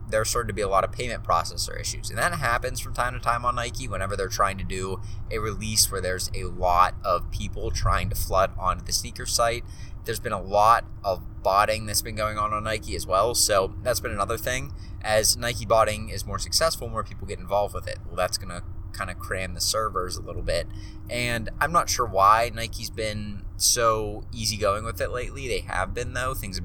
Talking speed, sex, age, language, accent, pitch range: 225 wpm, male, 20-39, English, American, 95-110 Hz